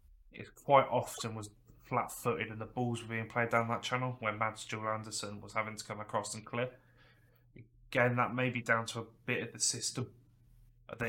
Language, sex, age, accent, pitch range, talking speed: English, male, 10-29, British, 110-120 Hz, 200 wpm